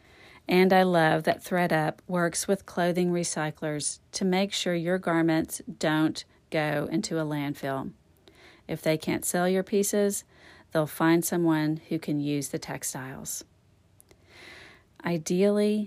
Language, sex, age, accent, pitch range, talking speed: English, female, 40-59, American, 150-195 Hz, 130 wpm